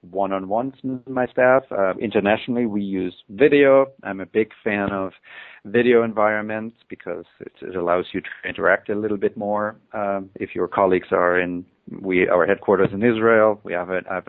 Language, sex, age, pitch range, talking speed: English, male, 40-59, 95-110 Hz, 170 wpm